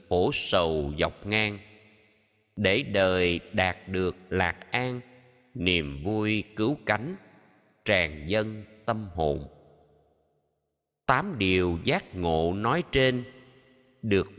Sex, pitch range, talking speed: male, 85-120 Hz, 105 wpm